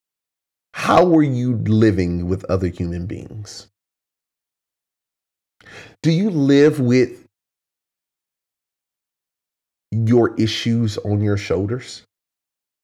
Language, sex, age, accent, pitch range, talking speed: English, male, 30-49, American, 95-130 Hz, 80 wpm